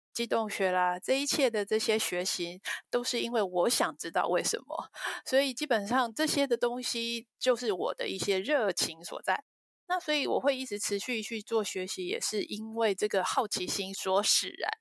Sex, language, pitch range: female, Chinese, 190-265 Hz